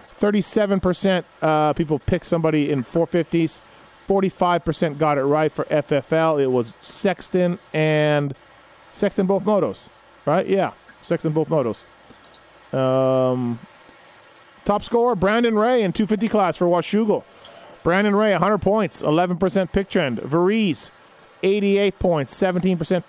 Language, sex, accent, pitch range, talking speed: English, male, American, 155-200 Hz, 115 wpm